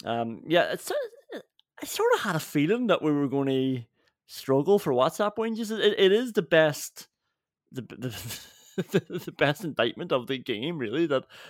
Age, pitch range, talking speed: 30-49, 125-160 Hz, 185 wpm